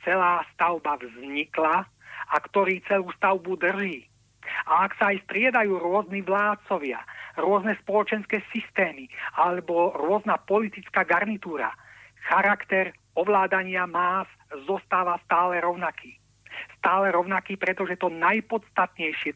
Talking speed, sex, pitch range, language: 100 wpm, male, 175-215 Hz, Czech